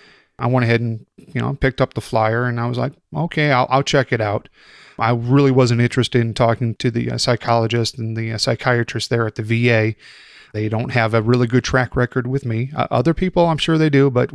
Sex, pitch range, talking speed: male, 115-135 Hz, 235 wpm